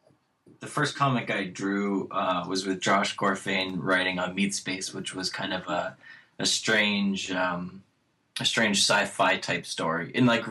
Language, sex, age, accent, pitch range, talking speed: English, male, 20-39, American, 95-130 Hz, 165 wpm